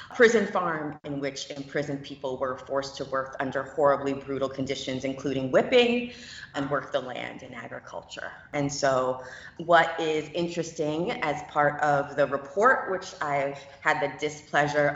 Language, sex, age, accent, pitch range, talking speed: English, female, 30-49, American, 140-175 Hz, 150 wpm